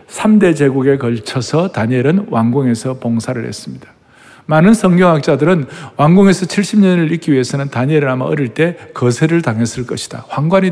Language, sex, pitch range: Korean, male, 125-195 Hz